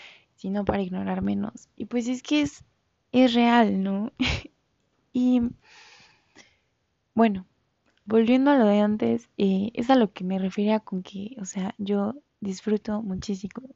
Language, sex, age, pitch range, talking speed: Spanish, female, 20-39, 200-245 Hz, 145 wpm